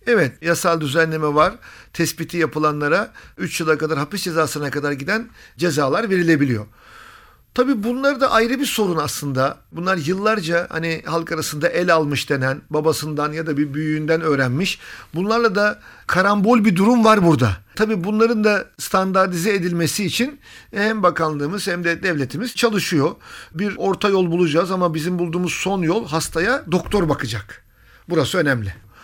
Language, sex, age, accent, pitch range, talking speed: Turkish, male, 50-69, native, 155-205 Hz, 145 wpm